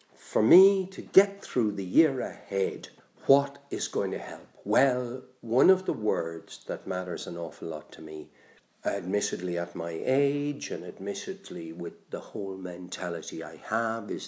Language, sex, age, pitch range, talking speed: English, male, 60-79, 90-135 Hz, 160 wpm